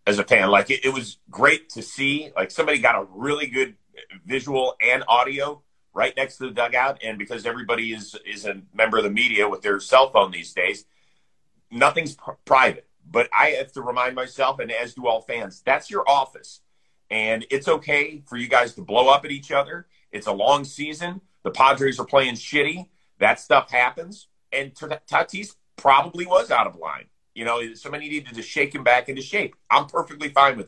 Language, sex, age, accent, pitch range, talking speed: English, male, 40-59, American, 120-150 Hz, 200 wpm